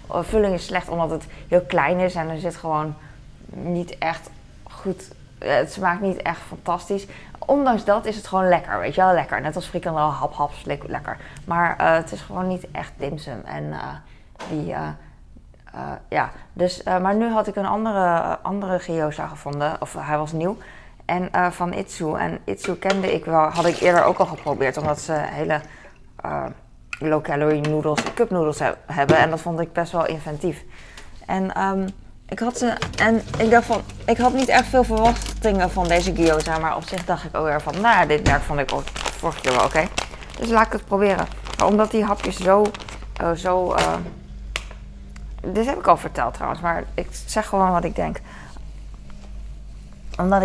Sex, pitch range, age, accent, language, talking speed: female, 150-190 Hz, 20-39, Dutch, Dutch, 195 wpm